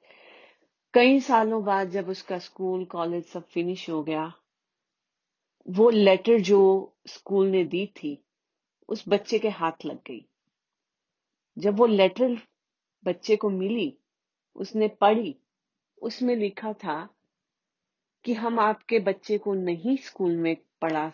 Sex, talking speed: female, 125 wpm